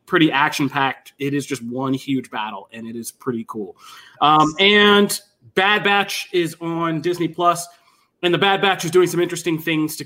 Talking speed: 190 wpm